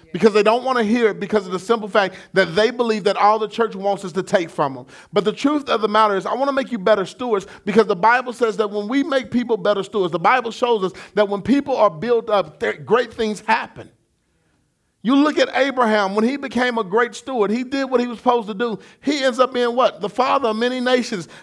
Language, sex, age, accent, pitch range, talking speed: English, male, 40-59, American, 215-290 Hz, 255 wpm